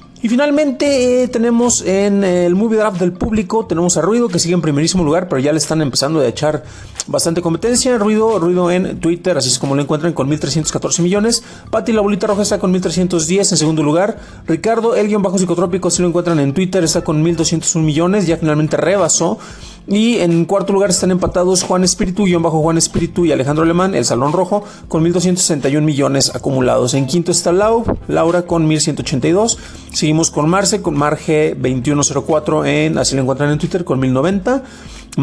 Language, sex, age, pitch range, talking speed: Spanish, male, 30-49, 155-200 Hz, 185 wpm